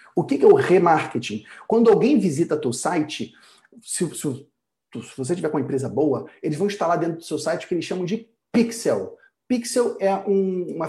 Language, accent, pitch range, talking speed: Portuguese, Brazilian, 170-235 Hz, 200 wpm